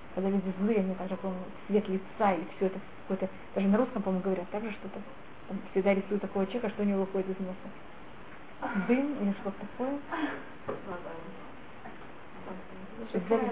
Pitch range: 195-240 Hz